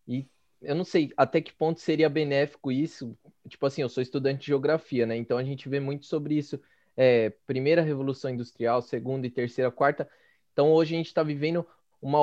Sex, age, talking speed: male, 20-39, 195 wpm